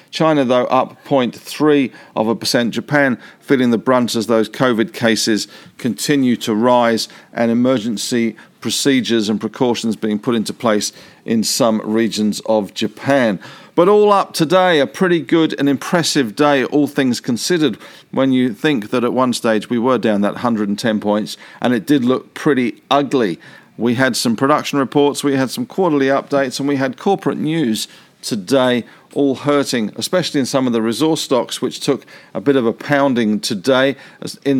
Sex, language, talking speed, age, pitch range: male, English, 170 wpm, 50-69, 115-145 Hz